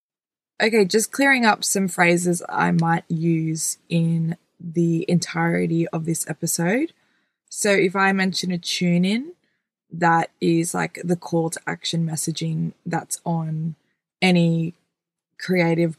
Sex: female